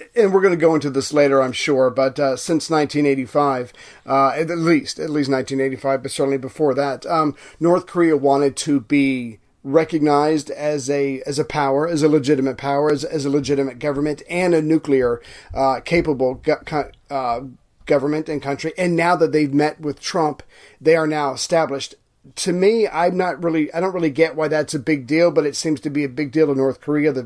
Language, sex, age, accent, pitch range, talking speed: English, male, 40-59, American, 140-165 Hz, 205 wpm